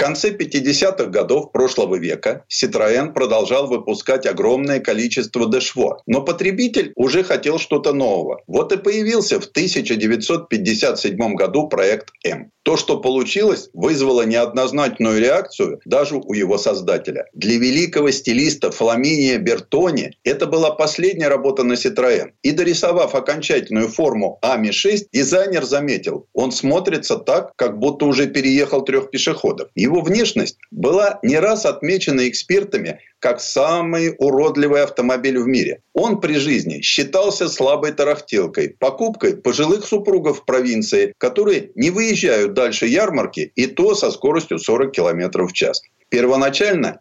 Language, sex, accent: Russian, male, native